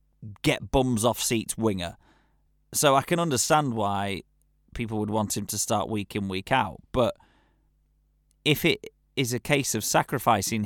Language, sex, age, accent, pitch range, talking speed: English, male, 30-49, British, 105-130 Hz, 160 wpm